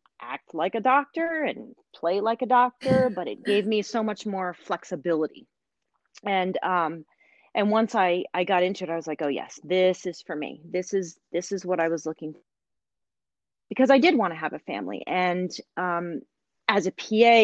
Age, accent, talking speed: 30-49, American, 195 wpm